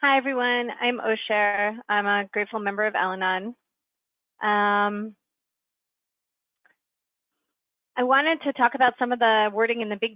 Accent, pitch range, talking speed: American, 205-235 Hz, 135 wpm